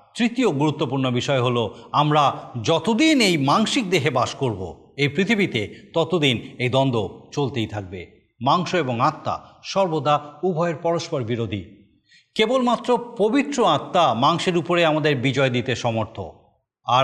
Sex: male